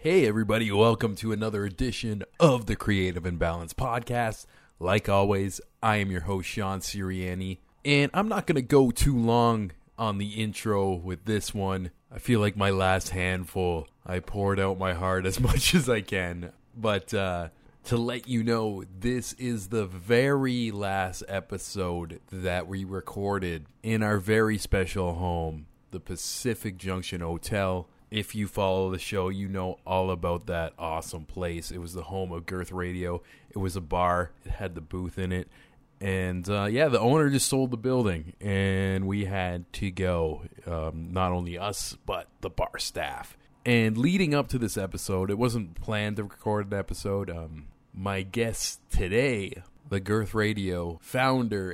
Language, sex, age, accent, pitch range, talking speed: English, male, 30-49, American, 90-110 Hz, 170 wpm